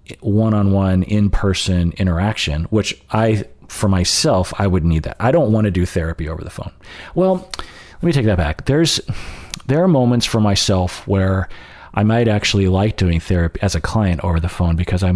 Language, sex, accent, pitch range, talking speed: English, male, American, 85-110 Hz, 185 wpm